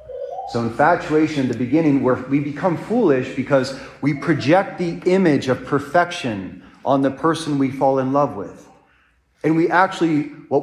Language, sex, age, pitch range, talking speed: English, male, 40-59, 120-155 Hz, 150 wpm